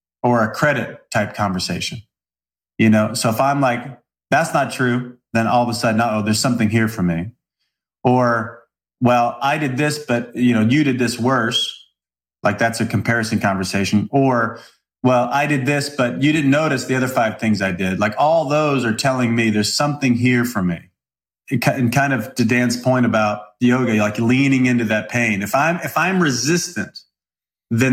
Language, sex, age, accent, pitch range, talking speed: English, male, 30-49, American, 110-140 Hz, 190 wpm